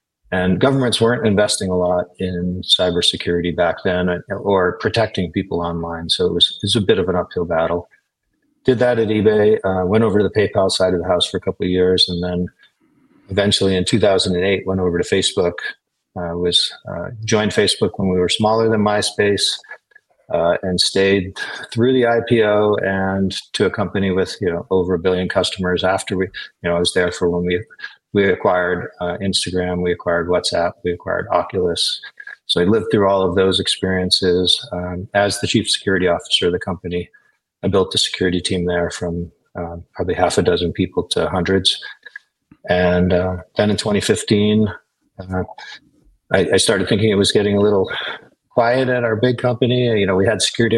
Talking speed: 190 wpm